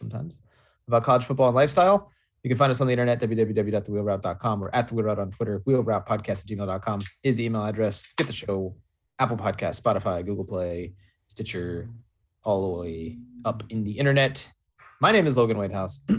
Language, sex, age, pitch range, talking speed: English, male, 20-39, 100-125 Hz, 180 wpm